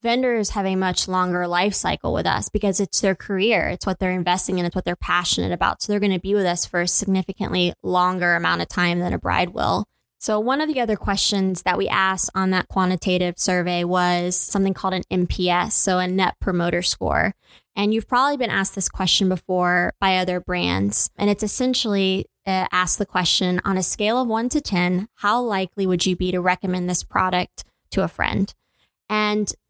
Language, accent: English, American